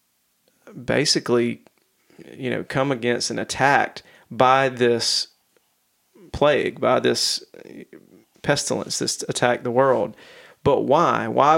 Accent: American